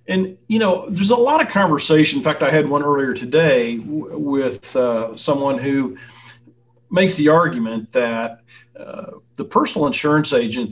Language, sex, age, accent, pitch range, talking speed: English, male, 40-59, American, 120-155 Hz, 160 wpm